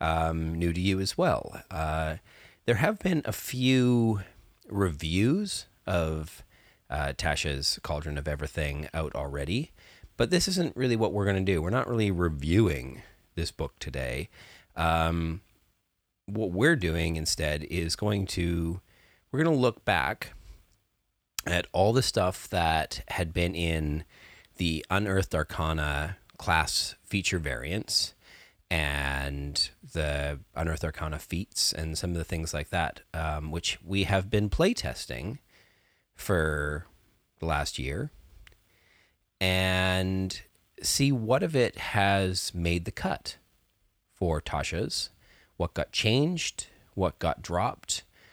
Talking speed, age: 130 wpm, 30-49